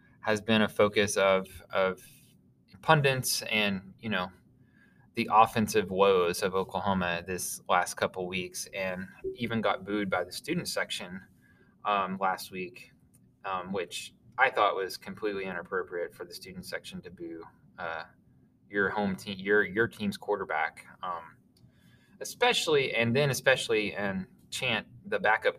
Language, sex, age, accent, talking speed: English, male, 20-39, American, 140 wpm